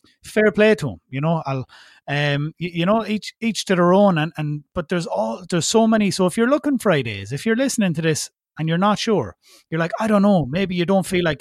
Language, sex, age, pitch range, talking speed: English, male, 30-49, 145-190 Hz, 250 wpm